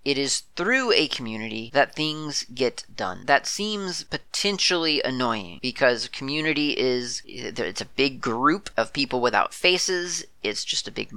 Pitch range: 120-150 Hz